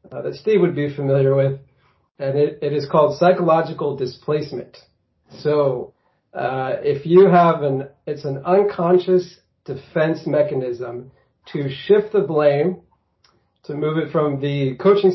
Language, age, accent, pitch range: English, 40-59, American, 130-160 Hz